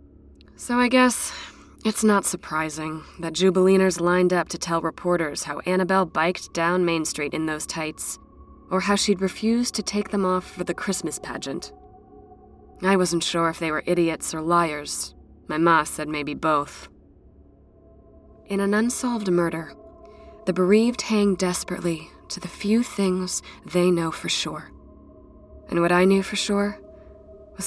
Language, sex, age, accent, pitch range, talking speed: English, female, 20-39, American, 145-190 Hz, 155 wpm